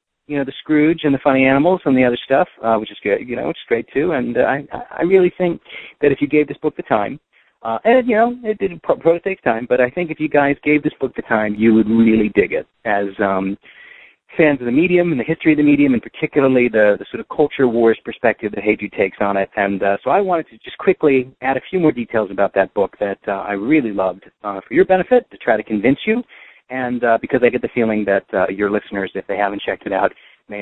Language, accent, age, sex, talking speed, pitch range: English, American, 40-59, male, 265 wpm, 110-165 Hz